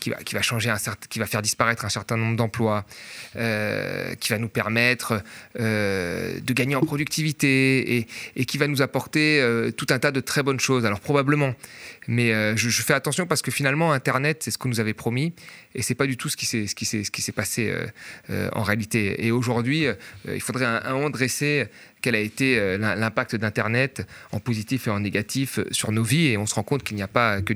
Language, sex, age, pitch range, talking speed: French, male, 30-49, 110-130 Hz, 220 wpm